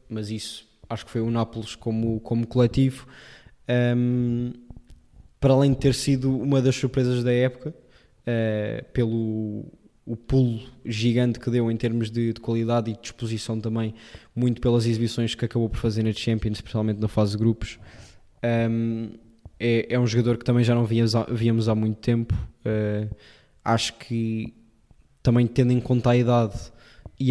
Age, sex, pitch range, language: 20-39, male, 110-120 Hz, Portuguese